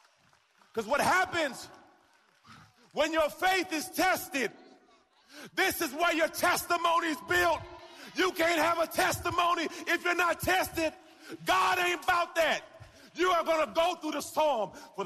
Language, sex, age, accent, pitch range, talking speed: English, male, 40-59, American, 255-350 Hz, 150 wpm